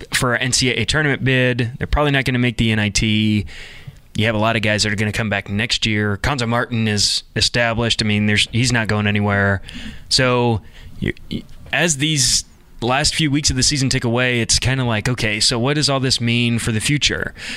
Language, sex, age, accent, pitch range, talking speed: English, male, 20-39, American, 110-130 Hz, 215 wpm